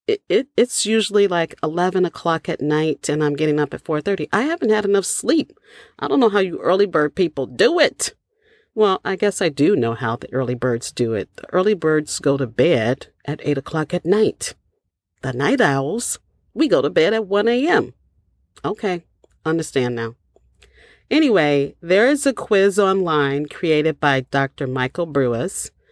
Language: English